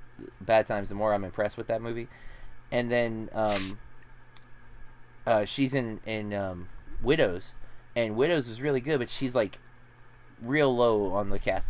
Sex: male